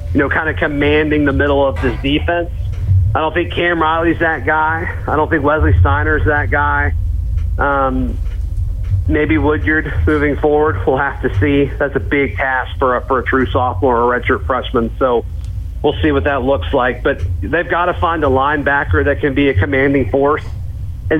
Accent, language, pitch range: American, English, 95-155 Hz